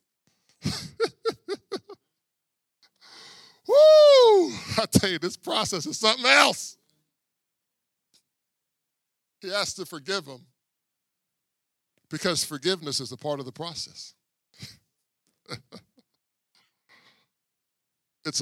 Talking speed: 75 wpm